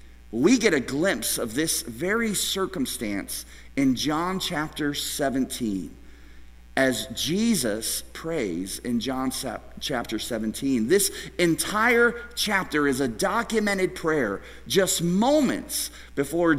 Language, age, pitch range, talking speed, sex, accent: English, 50-69, 110-180 Hz, 105 wpm, male, American